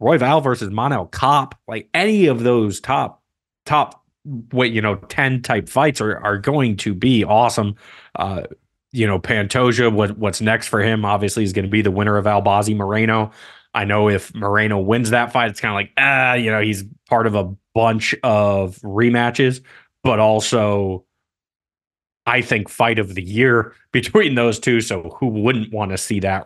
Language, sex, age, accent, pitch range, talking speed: English, male, 30-49, American, 100-120 Hz, 185 wpm